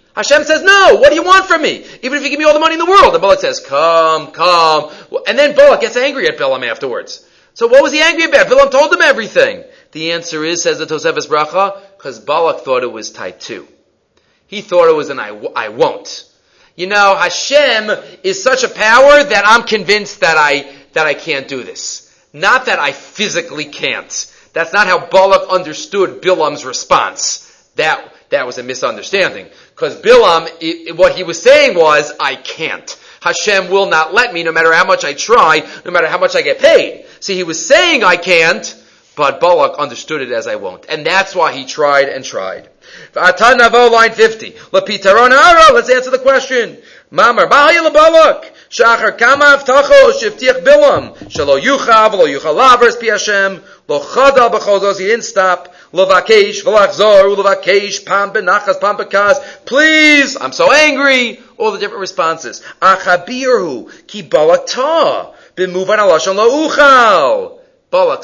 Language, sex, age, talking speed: English, male, 30-49, 180 wpm